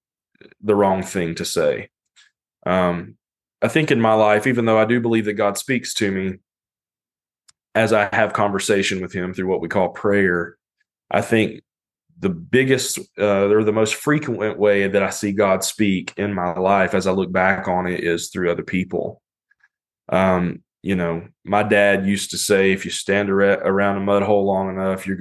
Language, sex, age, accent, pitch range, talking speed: English, male, 20-39, American, 95-110 Hz, 185 wpm